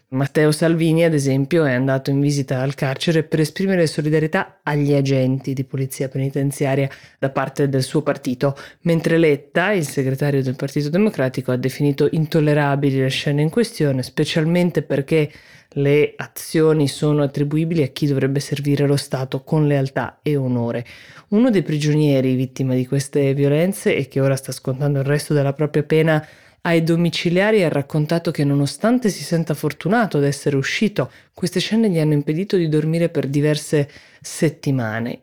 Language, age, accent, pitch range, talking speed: Italian, 20-39, native, 135-155 Hz, 155 wpm